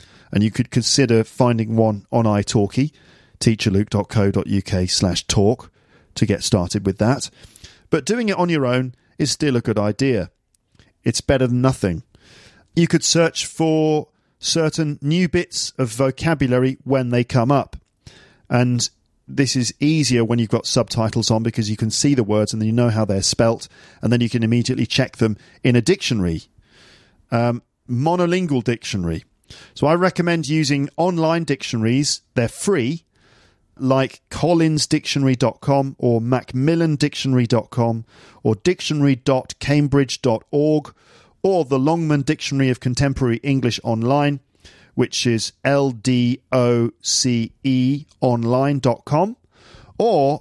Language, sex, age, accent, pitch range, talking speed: English, male, 40-59, British, 115-150 Hz, 135 wpm